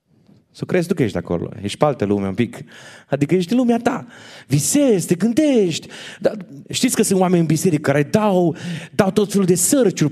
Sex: male